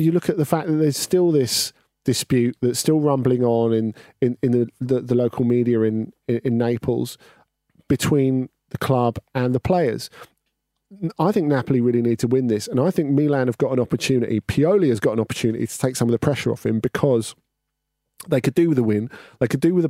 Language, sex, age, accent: English, male, 40-59, British